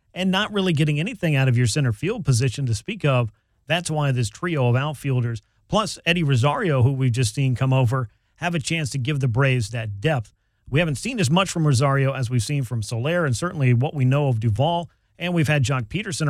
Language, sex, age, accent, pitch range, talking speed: English, male, 40-59, American, 120-155 Hz, 230 wpm